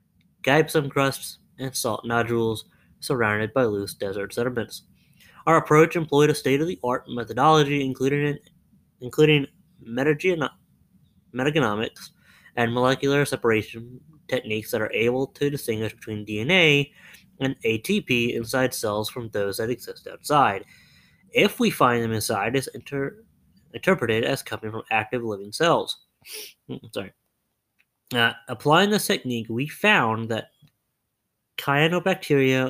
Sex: male